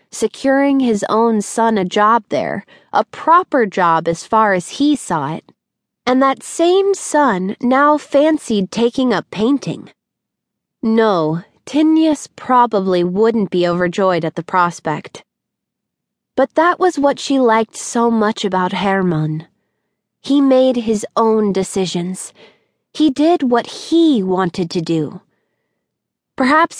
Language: English